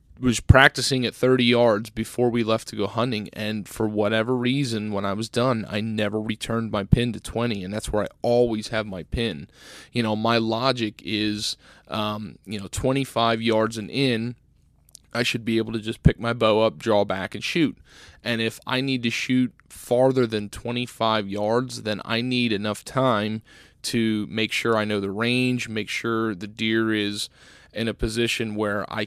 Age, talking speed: 20-39, 190 wpm